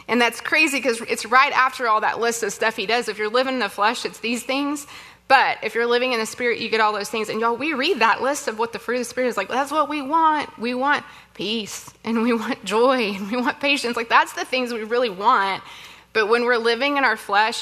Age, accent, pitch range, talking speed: 20-39, American, 205-245 Hz, 270 wpm